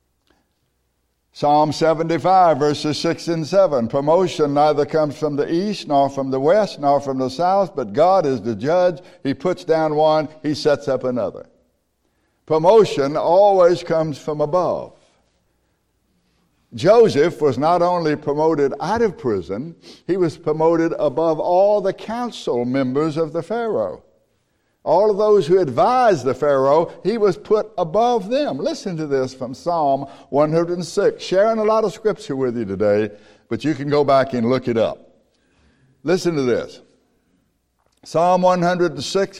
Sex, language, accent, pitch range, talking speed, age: male, English, American, 145-185 Hz, 150 wpm, 60-79